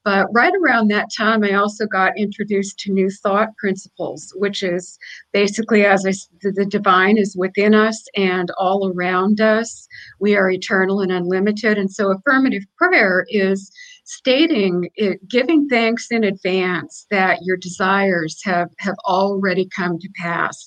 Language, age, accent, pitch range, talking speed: English, 50-69, American, 190-230 Hz, 150 wpm